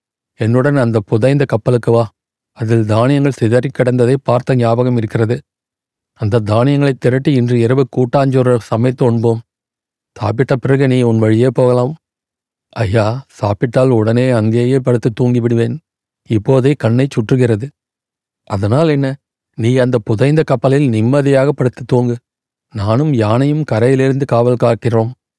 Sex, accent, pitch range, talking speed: male, native, 115-135 Hz, 115 wpm